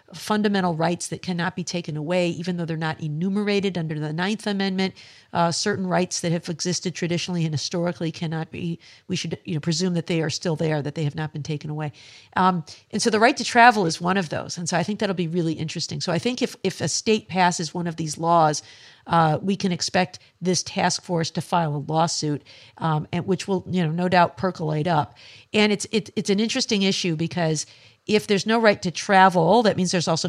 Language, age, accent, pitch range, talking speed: English, 50-69, American, 160-190 Hz, 225 wpm